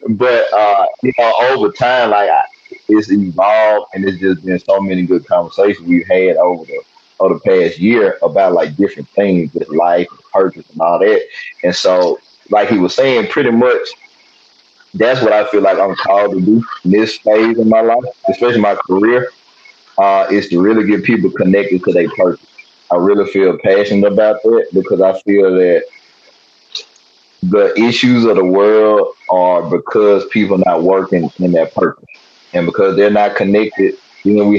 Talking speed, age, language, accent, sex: 180 wpm, 30-49, English, American, male